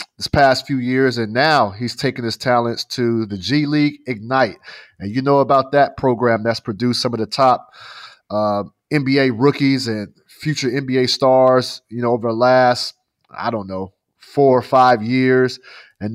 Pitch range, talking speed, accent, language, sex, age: 115-140 Hz, 175 wpm, American, English, male, 30-49